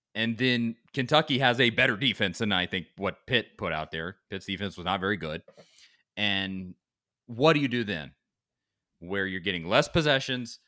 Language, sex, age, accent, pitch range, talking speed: English, male, 30-49, American, 105-150 Hz, 180 wpm